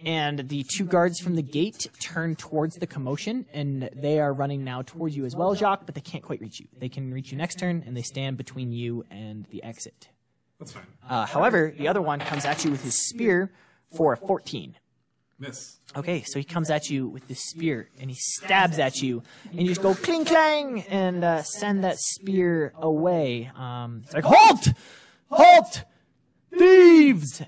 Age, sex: 20-39, male